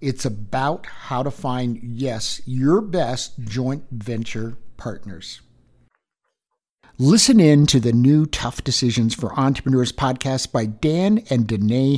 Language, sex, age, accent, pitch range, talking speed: English, male, 60-79, American, 130-195 Hz, 125 wpm